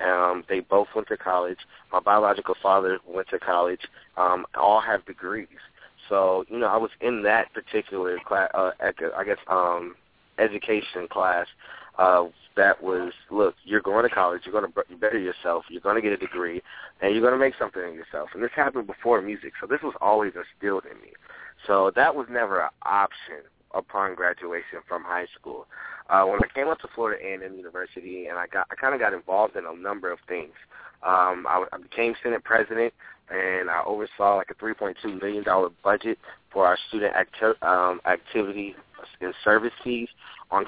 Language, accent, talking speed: English, American, 195 wpm